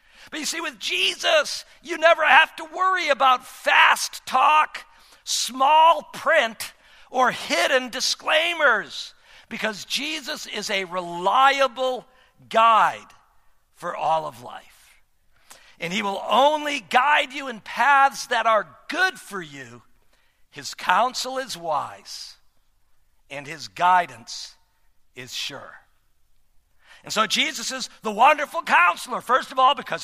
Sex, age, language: male, 50-69, English